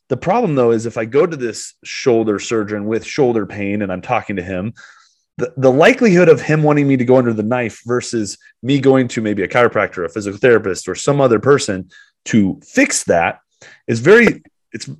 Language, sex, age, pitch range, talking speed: English, male, 30-49, 105-140 Hz, 205 wpm